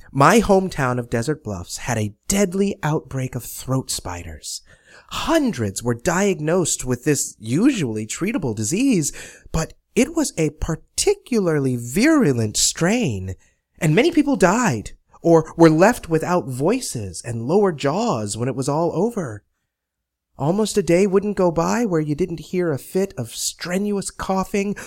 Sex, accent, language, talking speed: male, American, English, 140 wpm